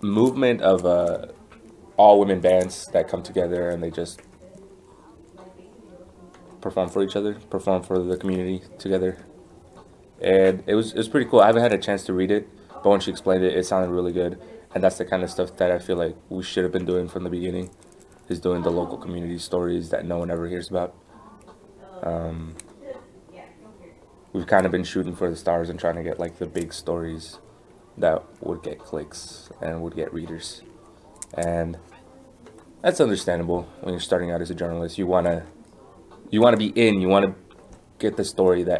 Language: English